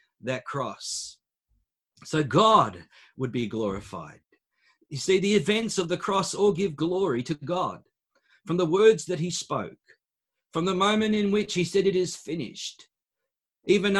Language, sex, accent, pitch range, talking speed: English, male, Australian, 145-185 Hz, 155 wpm